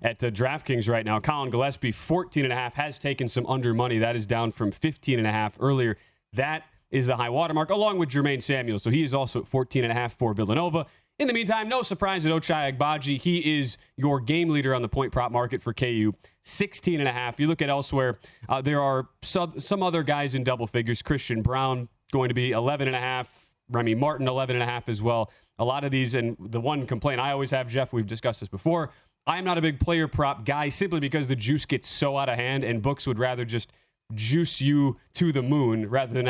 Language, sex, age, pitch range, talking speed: English, male, 30-49, 120-145 Hz, 205 wpm